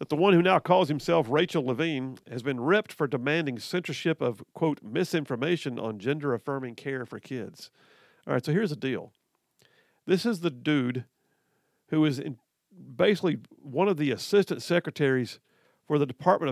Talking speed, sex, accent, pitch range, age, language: 160 wpm, male, American, 130-175 Hz, 50-69, English